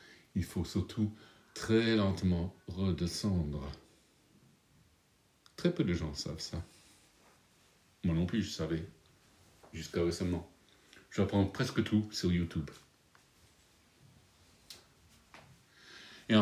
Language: English